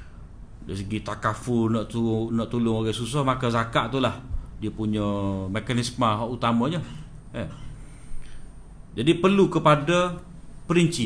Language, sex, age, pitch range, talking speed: Malay, male, 50-69, 120-160 Hz, 120 wpm